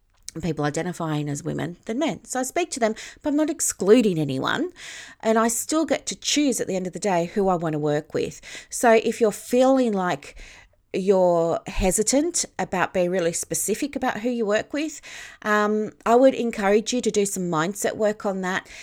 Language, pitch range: English, 170-225 Hz